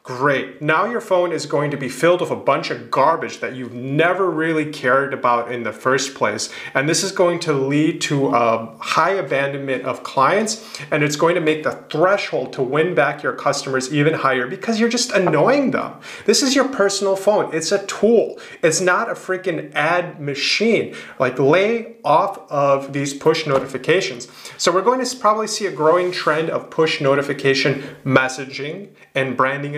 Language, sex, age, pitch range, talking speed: English, male, 30-49, 135-180 Hz, 185 wpm